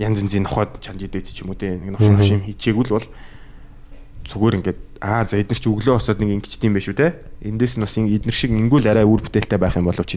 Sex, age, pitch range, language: male, 20-39, 95-125 Hz, Korean